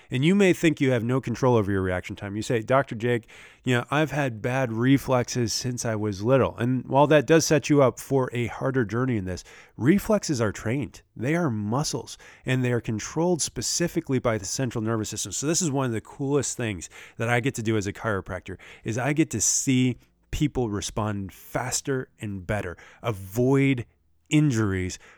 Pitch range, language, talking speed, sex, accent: 110-140 Hz, English, 200 wpm, male, American